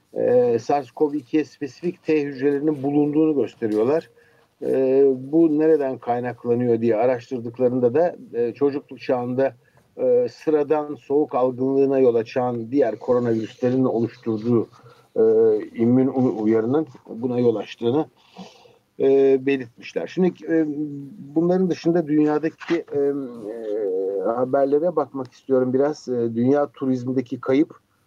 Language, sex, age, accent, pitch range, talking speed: Turkish, male, 60-79, native, 120-150 Hz, 105 wpm